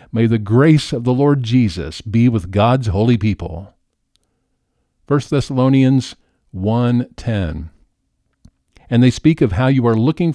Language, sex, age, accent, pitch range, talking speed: English, male, 50-69, American, 105-145 Hz, 135 wpm